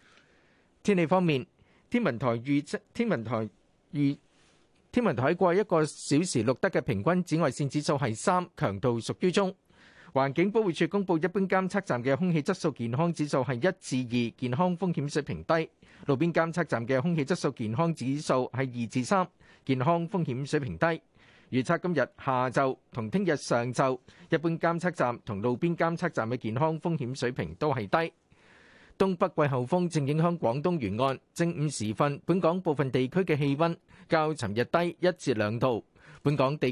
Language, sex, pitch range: Chinese, male, 125-170 Hz